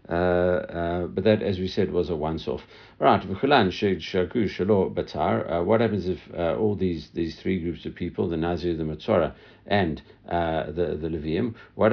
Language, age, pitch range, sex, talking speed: English, 60-79, 85-100 Hz, male, 165 wpm